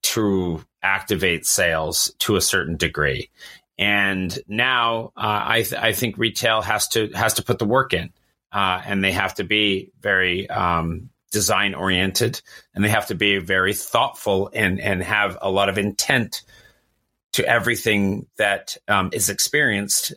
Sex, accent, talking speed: male, American, 155 wpm